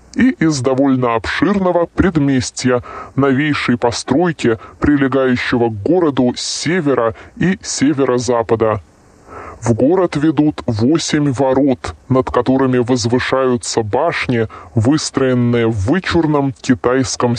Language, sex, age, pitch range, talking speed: Russian, female, 20-39, 120-150 Hz, 95 wpm